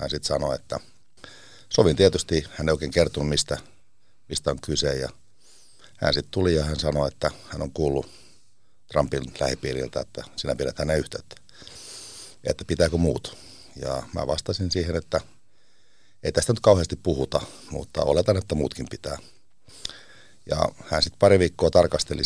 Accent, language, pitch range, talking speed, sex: native, Finnish, 70-90 Hz, 150 wpm, male